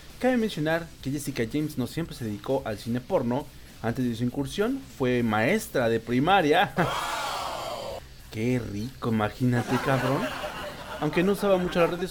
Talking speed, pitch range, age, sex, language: 150 wpm, 115-165 Hz, 40-59, male, English